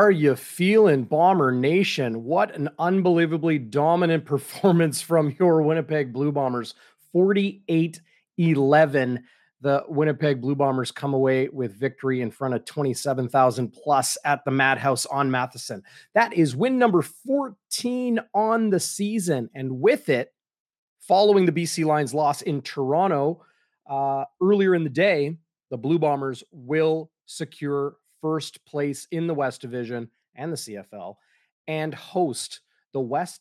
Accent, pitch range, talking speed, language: American, 140-185 Hz, 135 wpm, English